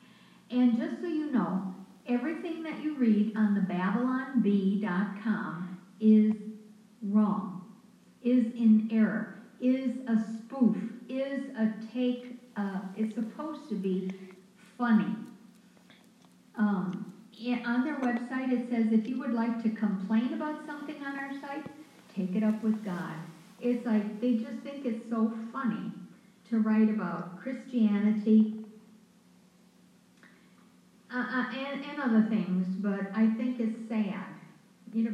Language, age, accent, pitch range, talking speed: English, 60-79, American, 210-245 Hz, 130 wpm